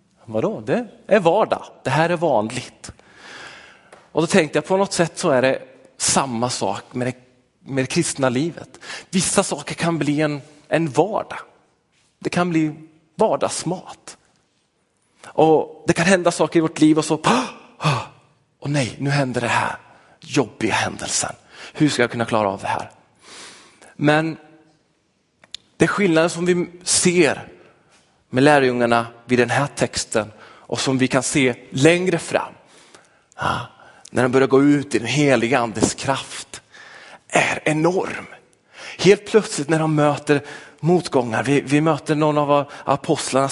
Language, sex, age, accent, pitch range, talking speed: Swedish, male, 30-49, native, 130-160 Hz, 145 wpm